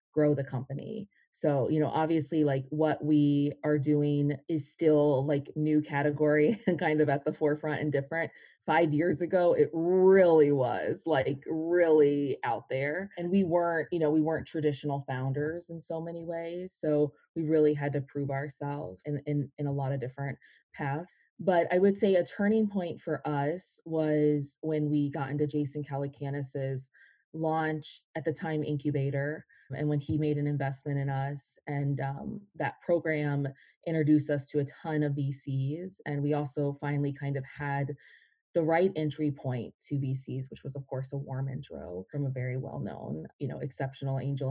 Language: English